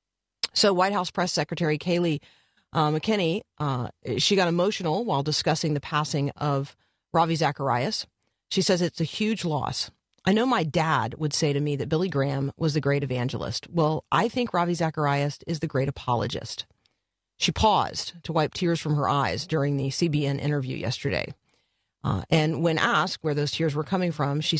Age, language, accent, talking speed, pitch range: 40-59, English, American, 175 wpm, 140-180 Hz